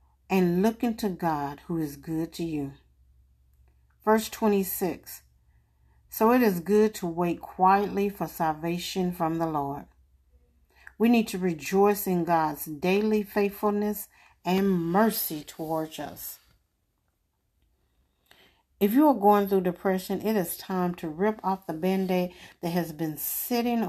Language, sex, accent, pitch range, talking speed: English, female, American, 155-205 Hz, 135 wpm